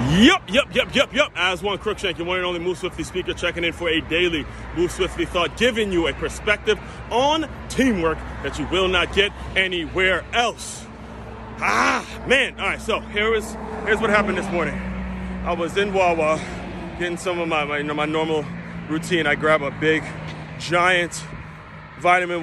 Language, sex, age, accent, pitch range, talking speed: English, male, 30-49, American, 145-180 Hz, 180 wpm